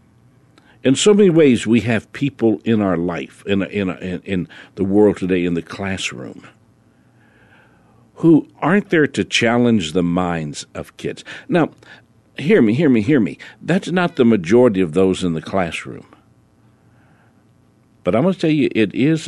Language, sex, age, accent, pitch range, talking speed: English, male, 60-79, American, 100-140 Hz, 170 wpm